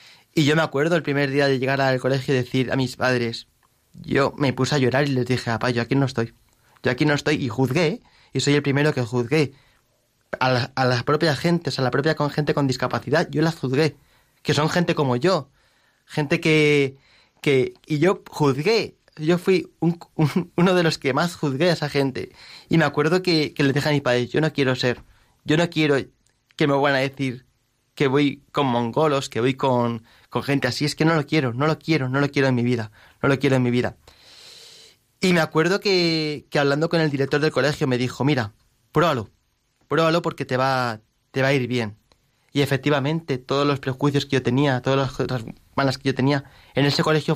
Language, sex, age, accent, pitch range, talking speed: Spanish, male, 20-39, Spanish, 125-155 Hz, 225 wpm